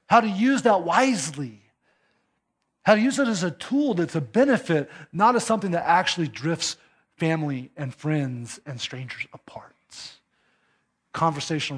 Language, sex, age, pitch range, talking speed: English, male, 30-49, 140-175 Hz, 145 wpm